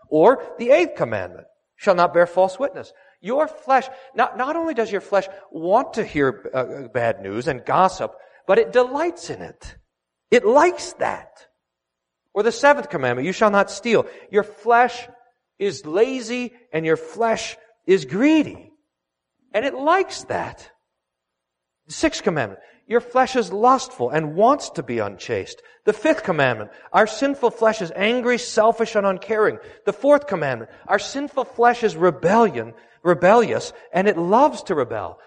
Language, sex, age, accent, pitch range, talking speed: English, male, 40-59, American, 180-255 Hz, 155 wpm